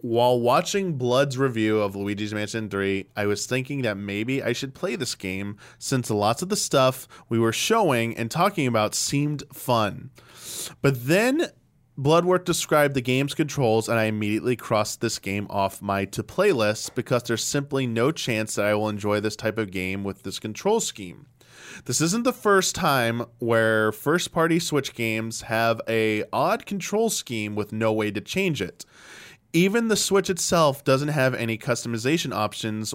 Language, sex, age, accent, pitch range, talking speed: English, male, 20-39, American, 110-155 Hz, 175 wpm